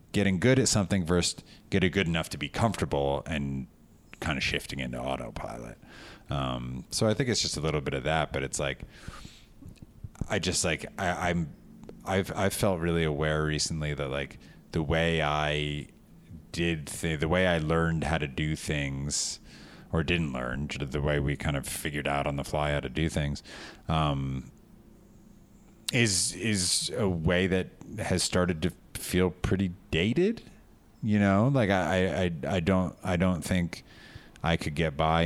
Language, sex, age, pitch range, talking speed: English, male, 30-49, 75-95 Hz, 170 wpm